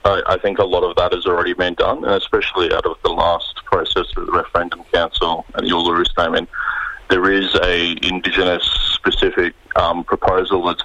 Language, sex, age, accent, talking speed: English, male, 30-49, Australian, 175 wpm